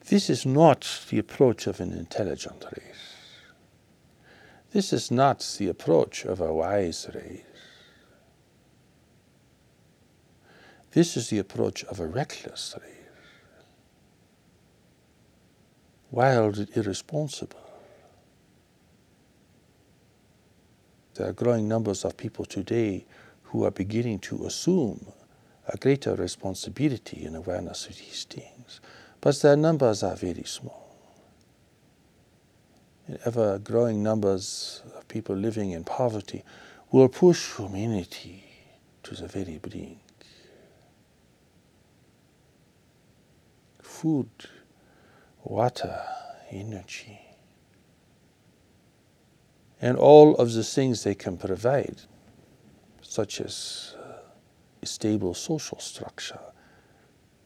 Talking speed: 90 wpm